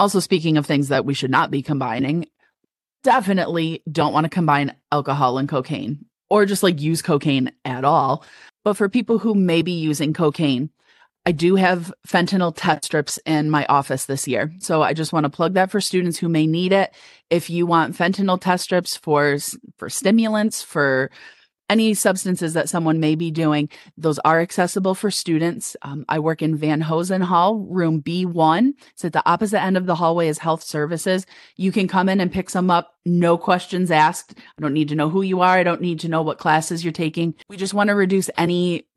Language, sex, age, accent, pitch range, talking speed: English, female, 30-49, American, 150-185 Hz, 205 wpm